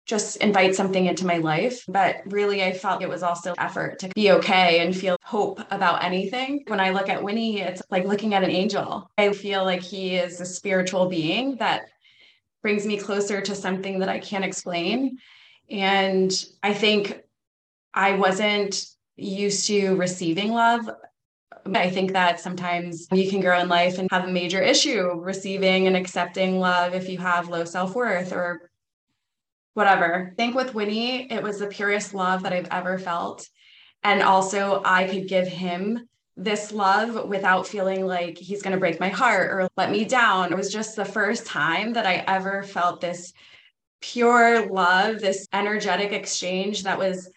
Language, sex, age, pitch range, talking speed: English, female, 20-39, 180-205 Hz, 170 wpm